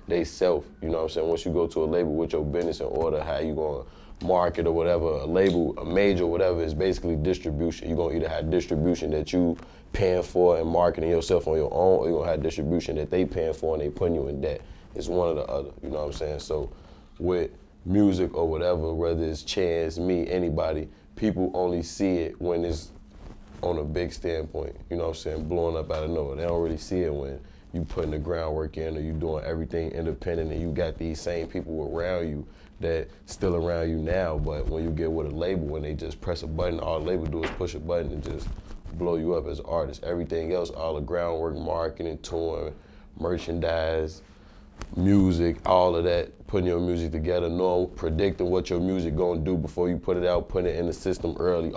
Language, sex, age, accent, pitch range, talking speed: English, male, 20-39, American, 80-90 Hz, 225 wpm